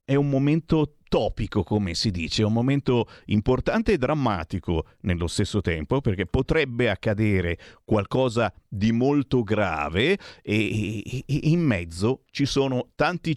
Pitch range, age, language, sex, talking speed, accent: 100-130 Hz, 50-69, Italian, male, 130 wpm, native